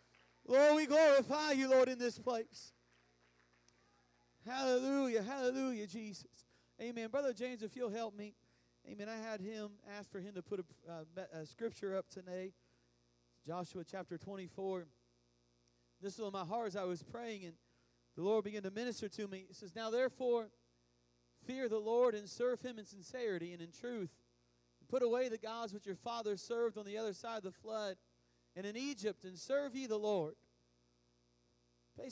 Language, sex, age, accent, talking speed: English, male, 40-59, American, 170 wpm